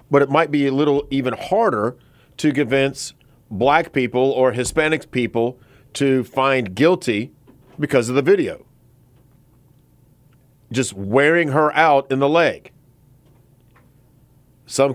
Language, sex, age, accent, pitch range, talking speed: English, male, 40-59, American, 130-160 Hz, 120 wpm